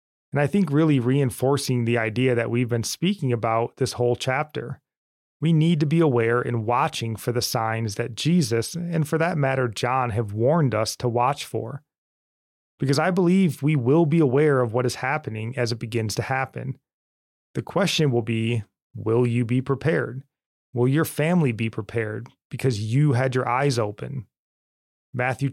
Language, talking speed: English, 175 wpm